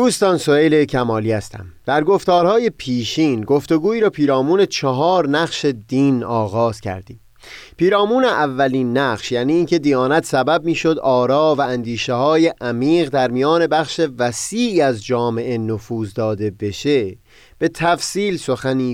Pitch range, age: 120-170 Hz, 30-49